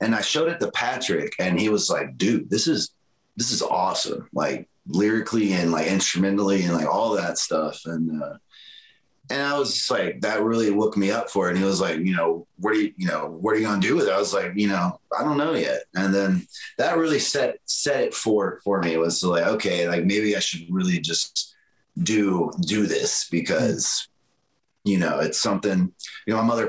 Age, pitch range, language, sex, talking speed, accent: 30-49, 85-115 Hz, English, male, 225 wpm, American